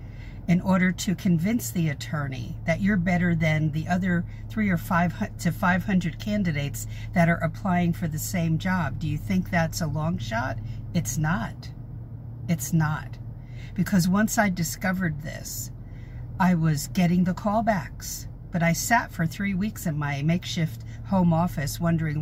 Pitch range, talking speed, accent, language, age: 115-180 Hz, 160 wpm, American, English, 50-69